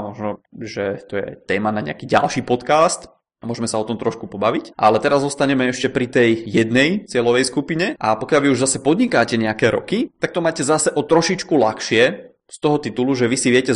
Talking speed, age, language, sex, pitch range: 200 wpm, 20-39, Czech, male, 115-145 Hz